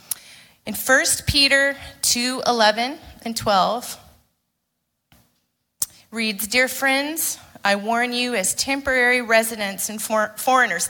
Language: English